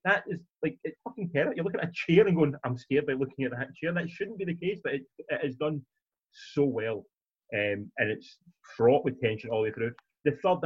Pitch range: 115-160 Hz